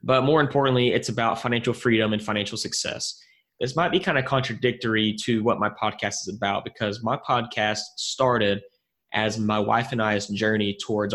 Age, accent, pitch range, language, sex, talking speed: 20-39, American, 105-125 Hz, English, male, 180 wpm